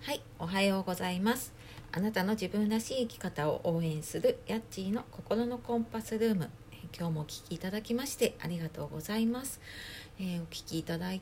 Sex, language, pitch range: female, Japanese, 150-215 Hz